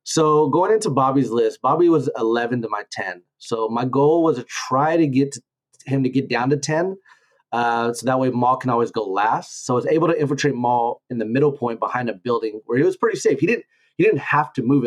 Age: 30-49